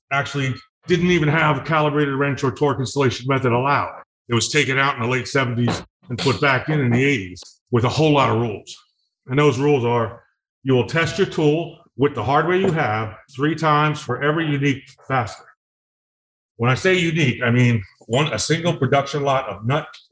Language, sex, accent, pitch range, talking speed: English, male, American, 115-150 Hz, 195 wpm